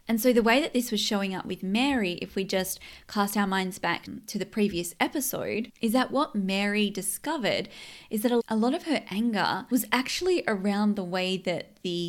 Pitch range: 200-255 Hz